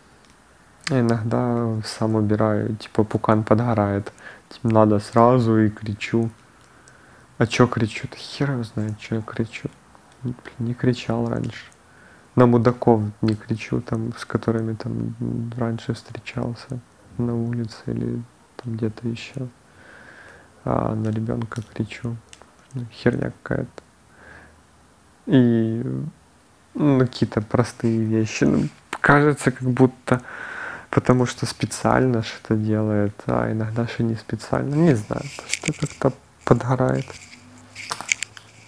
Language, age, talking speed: Ukrainian, 30-49, 110 wpm